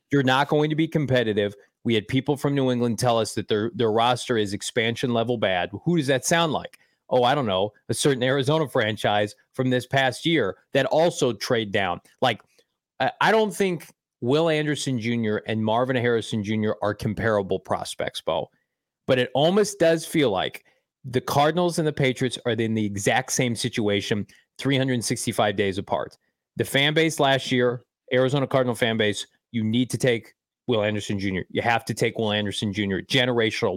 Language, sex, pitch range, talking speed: English, male, 115-140 Hz, 180 wpm